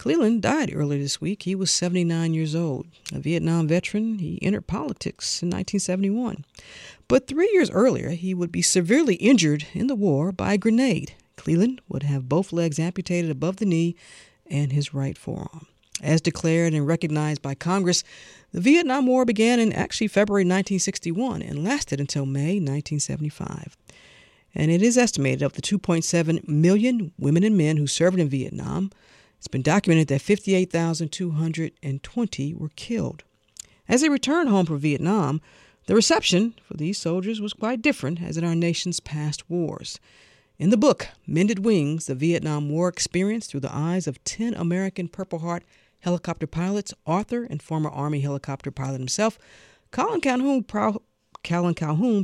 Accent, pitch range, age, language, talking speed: American, 150-205 Hz, 50-69, English, 160 wpm